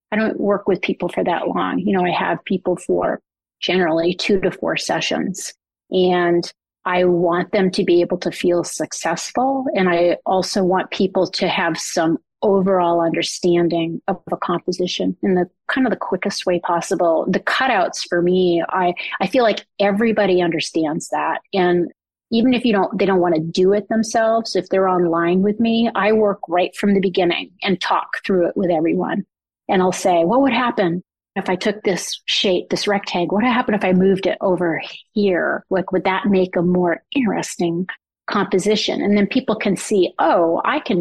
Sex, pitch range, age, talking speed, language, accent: female, 175-200 Hz, 30-49, 185 wpm, English, American